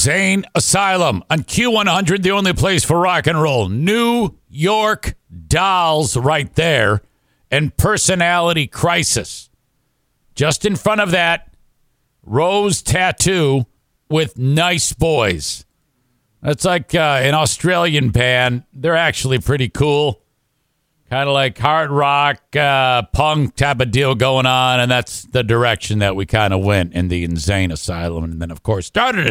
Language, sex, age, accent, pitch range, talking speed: English, male, 50-69, American, 120-170 Hz, 140 wpm